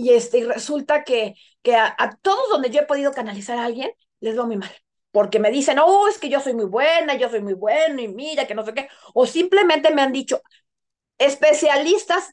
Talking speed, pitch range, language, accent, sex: 225 wpm, 235-295 Hz, Spanish, Mexican, female